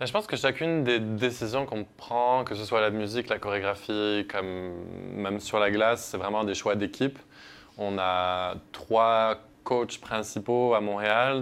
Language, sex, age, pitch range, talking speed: French, male, 20-39, 95-115 Hz, 170 wpm